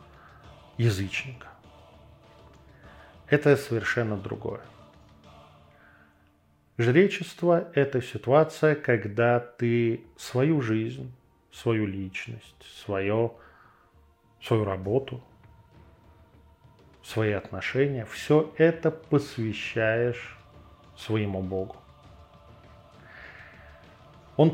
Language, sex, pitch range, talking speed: Russian, male, 100-130 Hz, 60 wpm